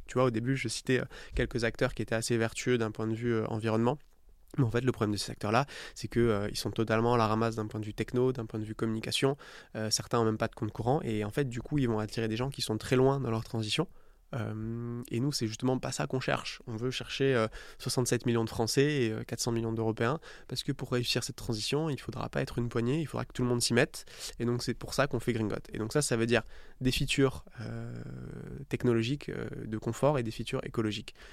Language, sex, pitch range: French, male, 110-125 Hz